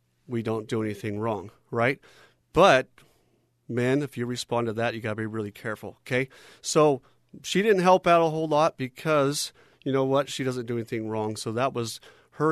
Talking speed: 195 wpm